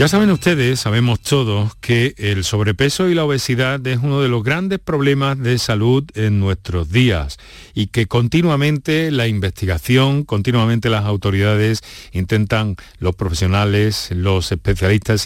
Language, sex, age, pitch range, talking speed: Spanish, male, 50-69, 100-130 Hz, 140 wpm